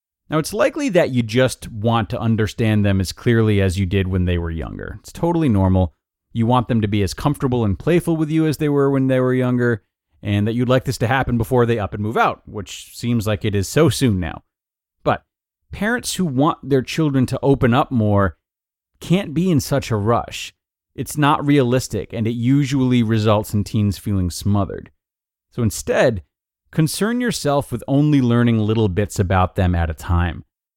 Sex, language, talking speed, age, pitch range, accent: male, English, 200 wpm, 30-49, 105-140 Hz, American